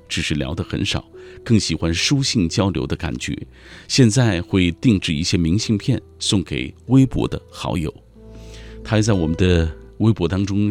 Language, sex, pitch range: Chinese, male, 80-110 Hz